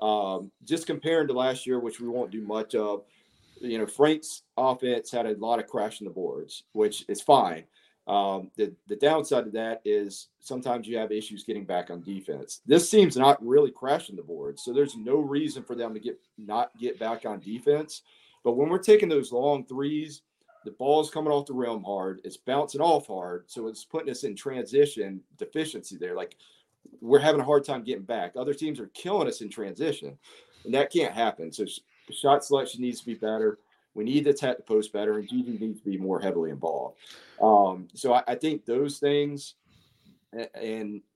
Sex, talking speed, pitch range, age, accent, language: male, 200 wpm, 105-150 Hz, 40-59, American, English